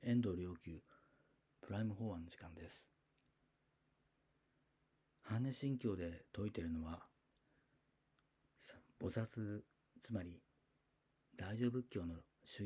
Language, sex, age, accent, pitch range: Japanese, male, 50-69, native, 90-140 Hz